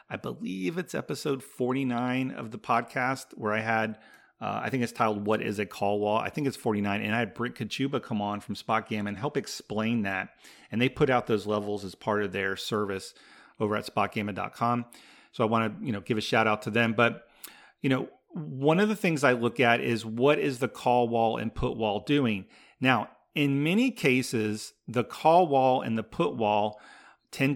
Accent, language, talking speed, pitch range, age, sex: American, English, 210 wpm, 110-140 Hz, 40-59, male